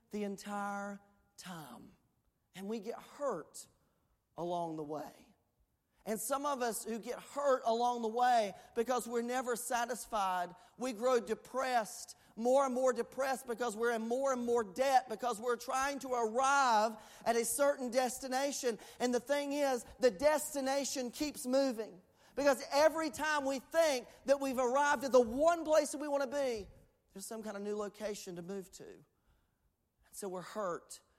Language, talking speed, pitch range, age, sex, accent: English, 160 wpm, 210-275 Hz, 40-59, male, American